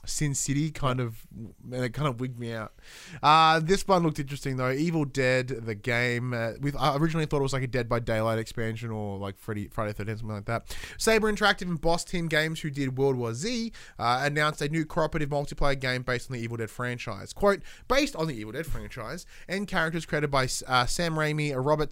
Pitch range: 115-160 Hz